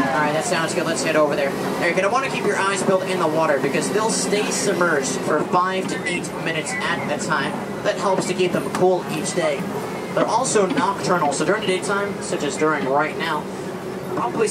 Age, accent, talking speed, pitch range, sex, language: 30-49, American, 205 wpm, 155-190 Hz, male, English